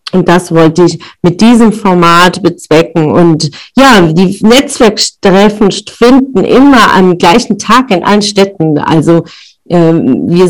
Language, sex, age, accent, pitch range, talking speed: German, female, 40-59, German, 185-215 Hz, 130 wpm